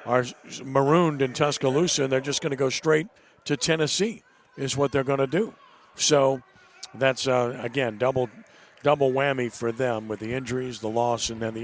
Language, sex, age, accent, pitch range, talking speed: English, male, 50-69, American, 120-140 Hz, 185 wpm